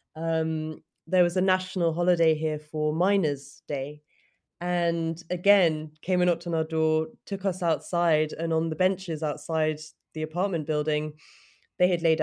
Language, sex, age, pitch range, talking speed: English, female, 20-39, 155-180 Hz, 155 wpm